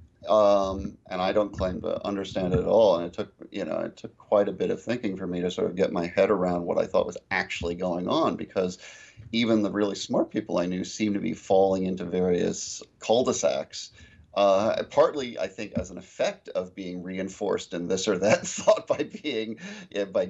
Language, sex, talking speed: English, male, 215 wpm